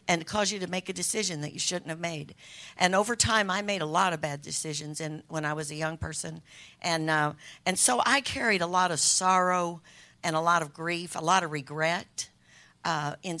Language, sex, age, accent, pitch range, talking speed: English, female, 60-79, American, 155-185 Hz, 225 wpm